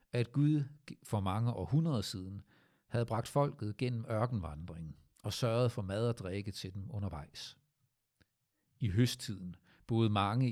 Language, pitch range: Danish, 100-130 Hz